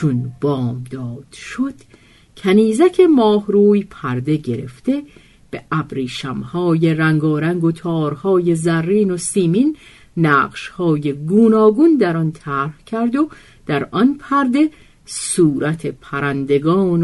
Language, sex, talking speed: Persian, female, 95 wpm